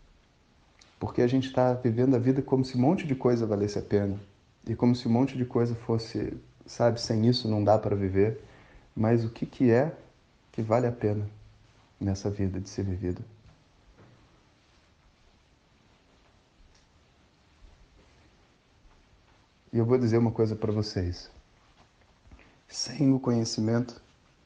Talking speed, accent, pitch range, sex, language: 135 wpm, Brazilian, 100-120 Hz, male, Portuguese